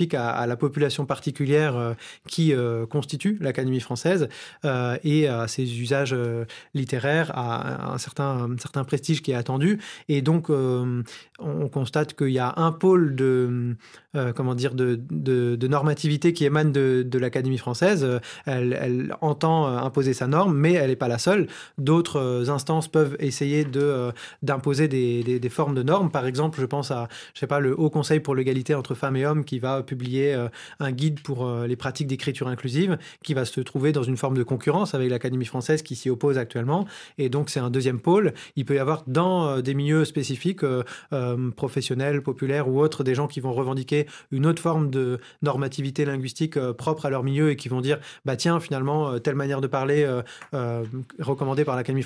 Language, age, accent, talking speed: French, 20-39, French, 195 wpm